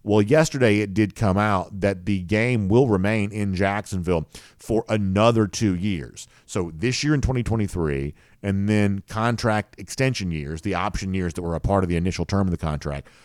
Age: 40-59